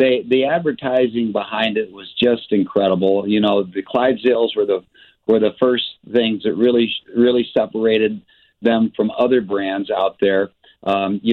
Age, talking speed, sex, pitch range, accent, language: 50-69, 160 wpm, male, 105-120 Hz, American, English